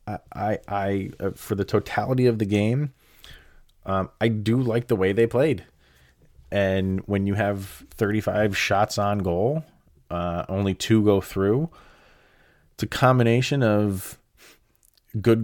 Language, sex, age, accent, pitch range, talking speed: English, male, 30-49, American, 90-110 Hz, 140 wpm